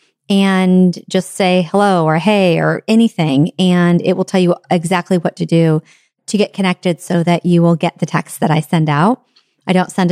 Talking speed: 200 wpm